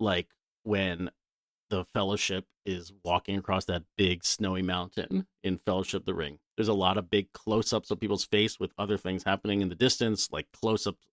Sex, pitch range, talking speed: male, 95-110 Hz, 185 wpm